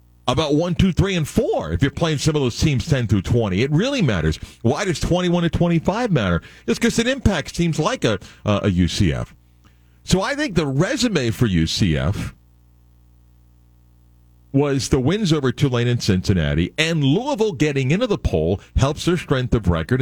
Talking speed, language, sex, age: 180 wpm, English, male, 50-69